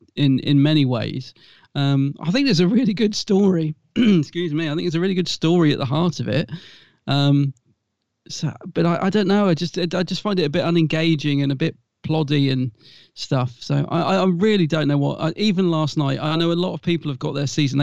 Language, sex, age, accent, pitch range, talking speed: English, male, 30-49, British, 135-170 Hz, 230 wpm